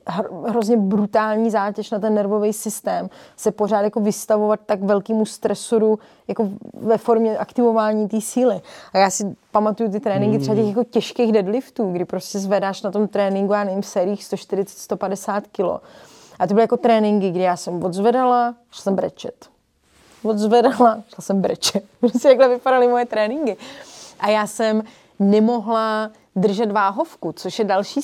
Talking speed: 150 wpm